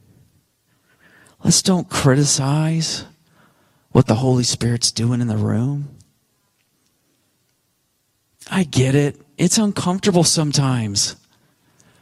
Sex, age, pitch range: male, 40-59, 130-195 Hz